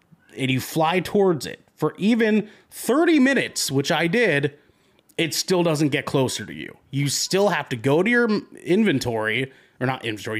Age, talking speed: 30-49, 175 wpm